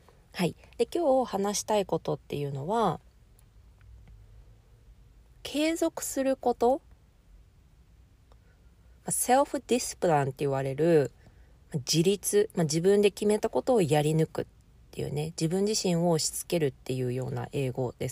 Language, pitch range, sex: Japanese, 130-215 Hz, female